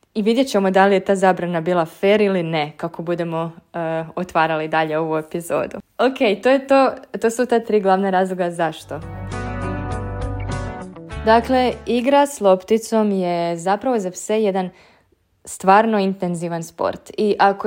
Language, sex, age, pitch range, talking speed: Croatian, female, 20-39, 175-215 Hz, 150 wpm